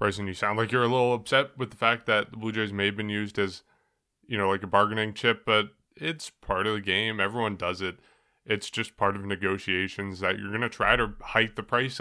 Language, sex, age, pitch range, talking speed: English, male, 20-39, 100-125 Hz, 245 wpm